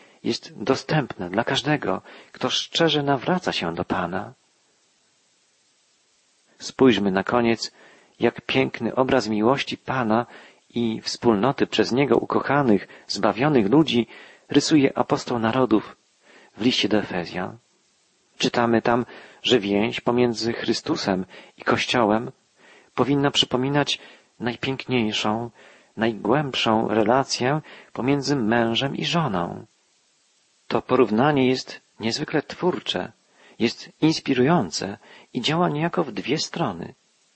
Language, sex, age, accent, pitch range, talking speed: Polish, male, 40-59, native, 115-145 Hz, 100 wpm